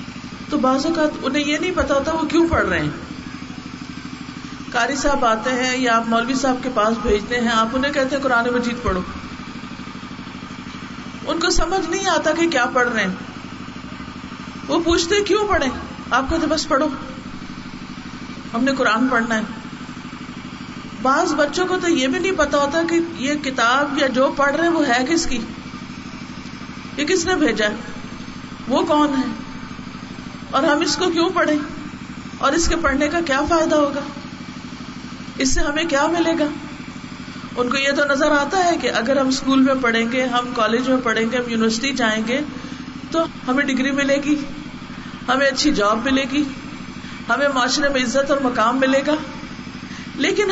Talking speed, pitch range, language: 175 wpm, 245-315 Hz, Urdu